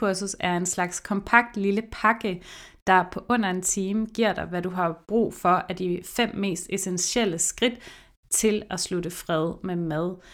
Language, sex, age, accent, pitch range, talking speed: Danish, female, 30-49, native, 175-210 Hz, 175 wpm